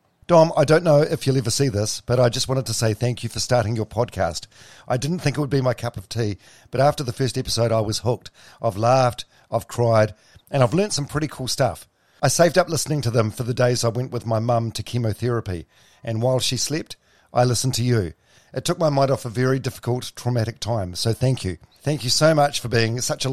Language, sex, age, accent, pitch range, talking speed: English, male, 50-69, Australian, 110-135 Hz, 245 wpm